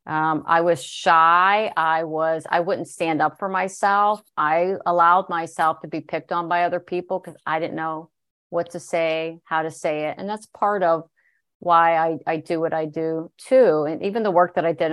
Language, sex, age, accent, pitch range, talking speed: English, female, 50-69, American, 155-175 Hz, 210 wpm